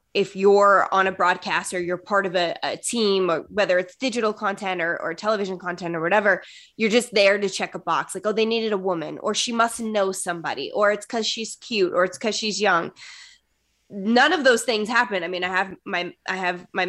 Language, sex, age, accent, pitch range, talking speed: English, female, 20-39, American, 180-215 Hz, 225 wpm